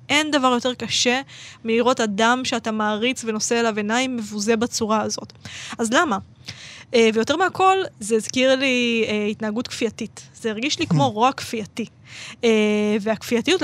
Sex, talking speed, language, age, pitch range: female, 130 wpm, Hebrew, 20-39, 220-260 Hz